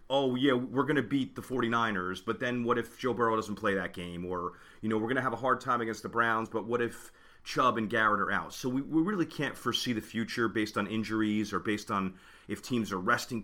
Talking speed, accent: 255 wpm, American